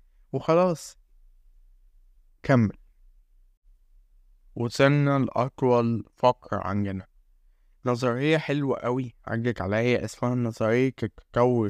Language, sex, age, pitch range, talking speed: Arabic, male, 20-39, 100-135 Hz, 70 wpm